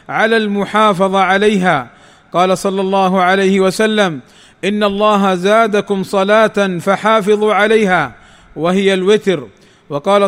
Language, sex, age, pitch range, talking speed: Arabic, male, 40-59, 195-215 Hz, 100 wpm